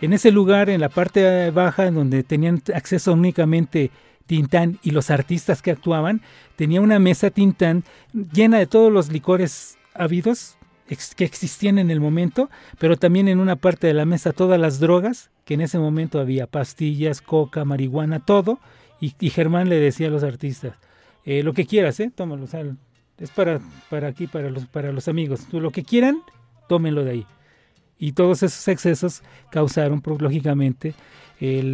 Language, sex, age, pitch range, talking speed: Spanish, male, 40-59, 145-180 Hz, 170 wpm